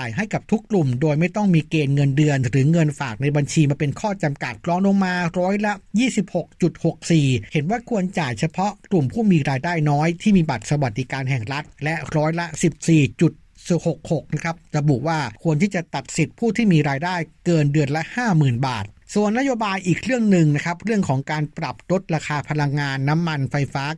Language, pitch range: Thai, 145-175 Hz